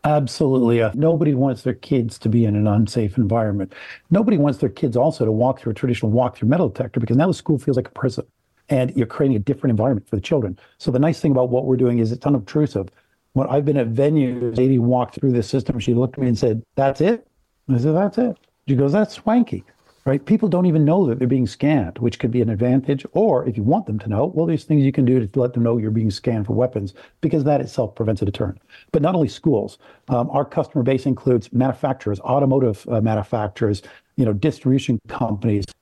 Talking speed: 230 wpm